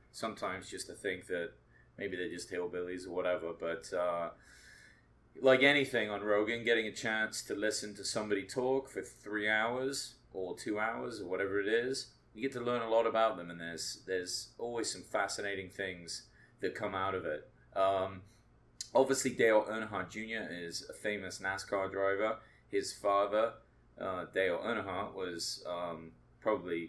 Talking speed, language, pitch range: 165 wpm, English, 85-110 Hz